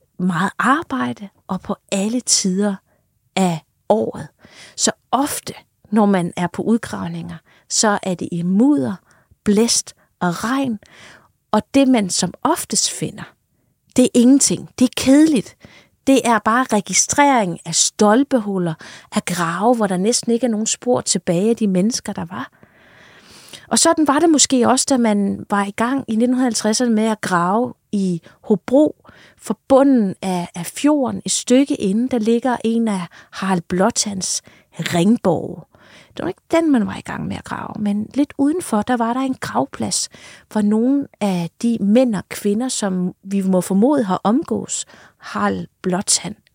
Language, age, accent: Danish, 30-49, native